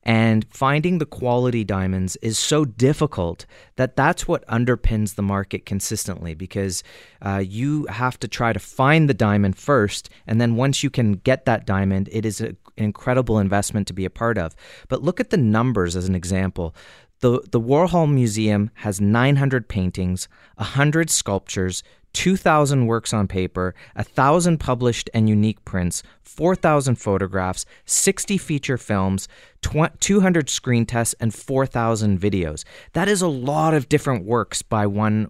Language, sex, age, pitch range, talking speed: English, male, 30-49, 100-140 Hz, 165 wpm